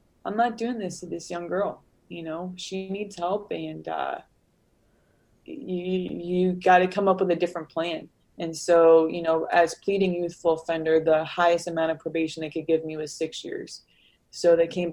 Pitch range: 170-240 Hz